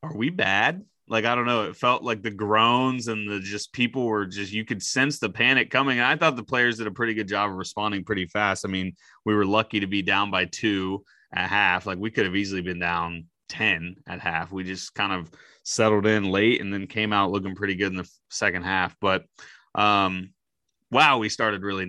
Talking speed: 230 wpm